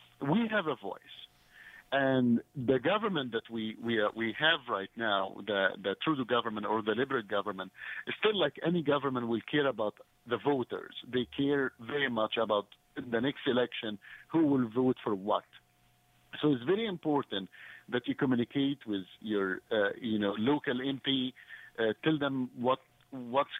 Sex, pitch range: male, 115-145 Hz